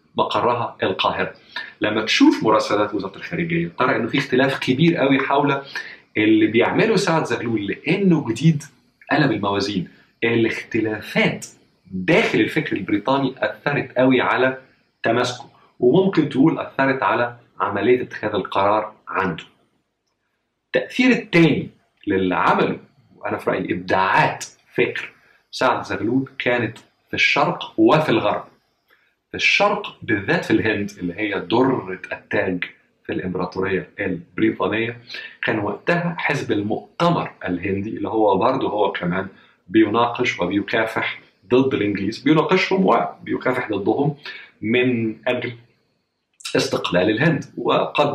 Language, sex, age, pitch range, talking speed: Arabic, male, 50-69, 110-155 Hz, 110 wpm